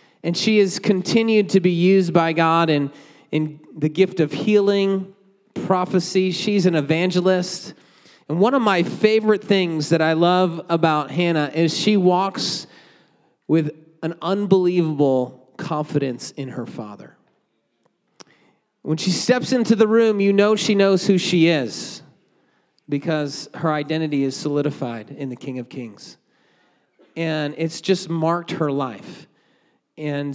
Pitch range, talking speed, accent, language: 160-200 Hz, 140 wpm, American, English